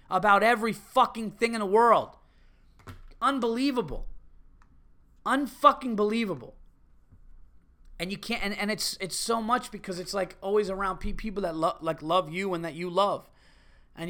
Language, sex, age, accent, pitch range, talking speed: English, male, 30-49, American, 155-215 Hz, 155 wpm